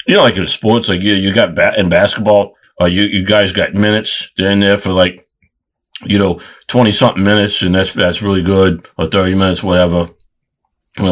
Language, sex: English, male